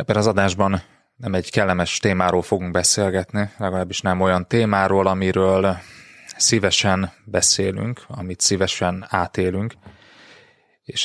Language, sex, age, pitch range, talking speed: Hungarian, male, 20-39, 90-105 Hz, 110 wpm